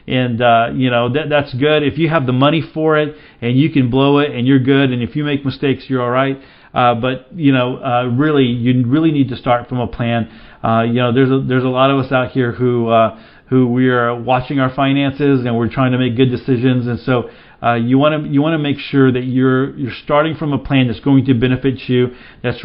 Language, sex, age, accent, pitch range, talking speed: English, male, 40-59, American, 125-140 Hz, 250 wpm